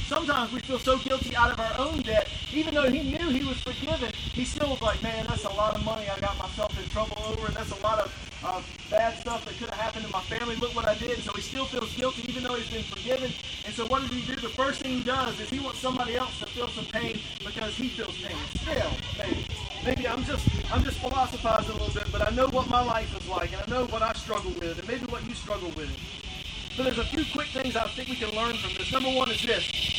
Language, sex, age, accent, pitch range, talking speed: English, male, 30-49, American, 235-275 Hz, 270 wpm